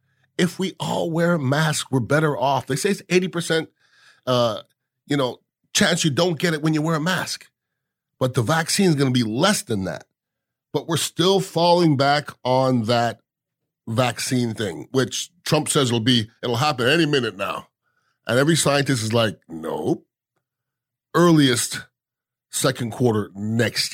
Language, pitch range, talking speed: English, 115-140 Hz, 165 wpm